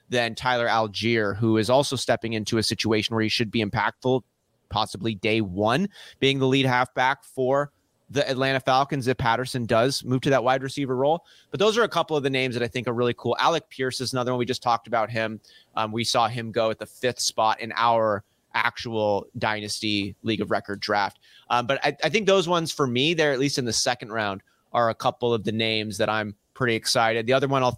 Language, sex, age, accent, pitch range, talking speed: English, male, 30-49, American, 115-145 Hz, 225 wpm